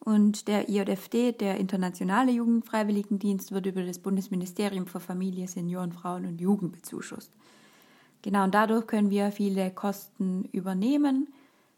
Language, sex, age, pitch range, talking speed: German, female, 20-39, 195-215 Hz, 125 wpm